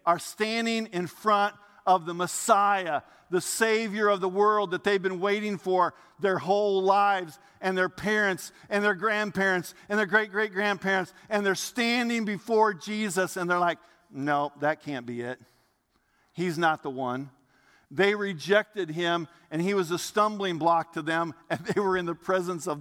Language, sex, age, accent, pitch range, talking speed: English, male, 50-69, American, 155-195 Hz, 170 wpm